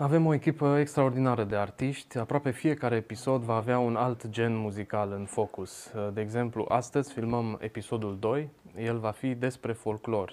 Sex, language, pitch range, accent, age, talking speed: male, Romanian, 105-125 Hz, native, 20-39, 165 wpm